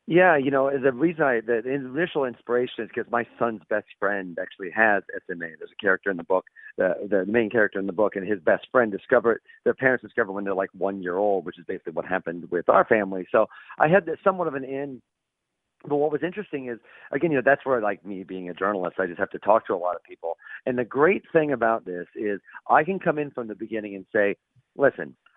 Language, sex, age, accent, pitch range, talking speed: English, male, 40-59, American, 110-155 Hz, 245 wpm